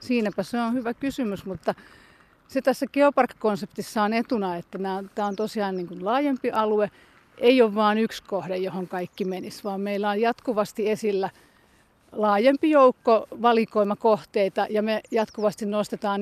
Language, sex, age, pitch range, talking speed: Finnish, female, 40-59, 200-230 Hz, 150 wpm